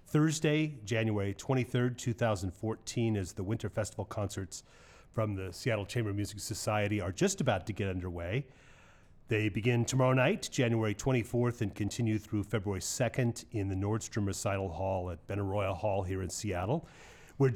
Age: 40-59